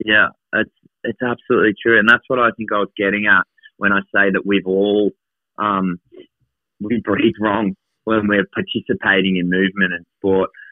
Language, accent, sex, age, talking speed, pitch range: English, Australian, male, 30-49, 175 wpm, 95-115 Hz